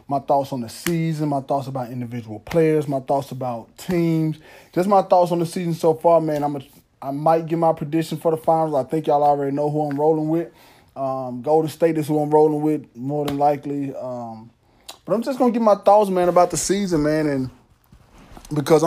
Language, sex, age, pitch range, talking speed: English, male, 20-39, 125-150 Hz, 215 wpm